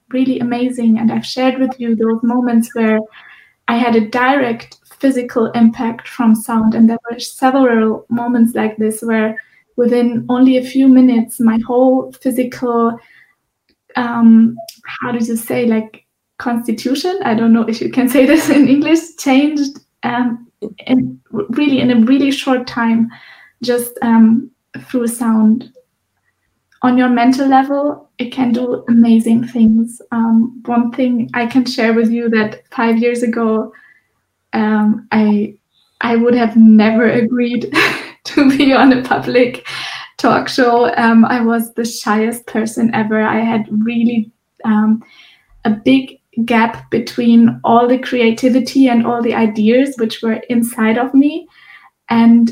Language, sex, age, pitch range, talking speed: English, female, 20-39, 230-255 Hz, 145 wpm